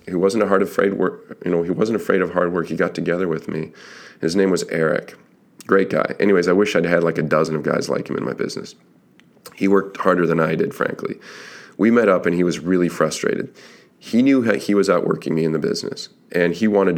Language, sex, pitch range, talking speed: English, male, 80-90 Hz, 240 wpm